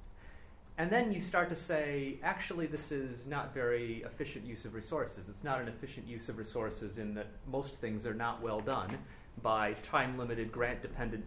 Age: 30-49